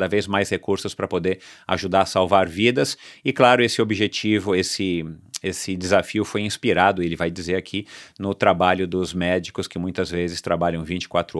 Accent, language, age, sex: Brazilian, Portuguese, 40-59, male